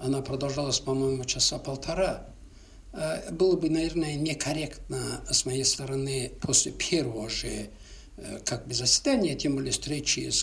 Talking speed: 125 wpm